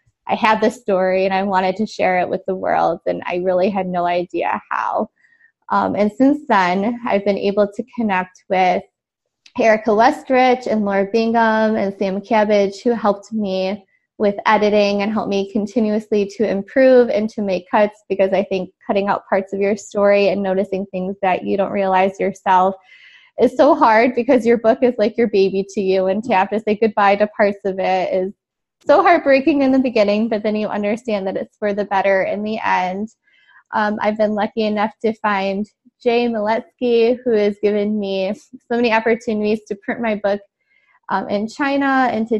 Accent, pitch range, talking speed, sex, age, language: American, 195-225 Hz, 190 wpm, female, 20-39, English